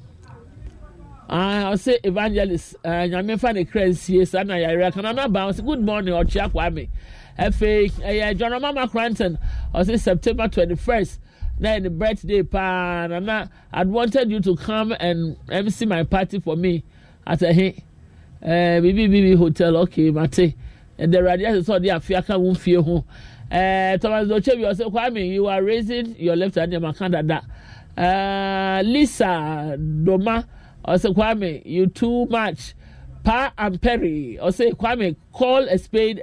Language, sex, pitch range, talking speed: English, male, 170-220 Hz, 140 wpm